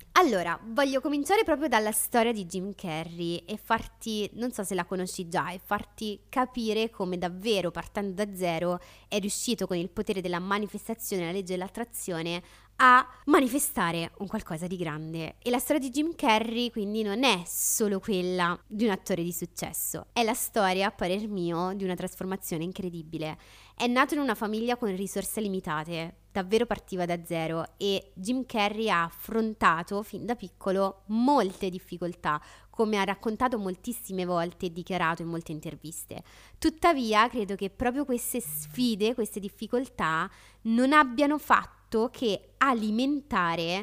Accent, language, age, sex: native, Italian, 20-39, female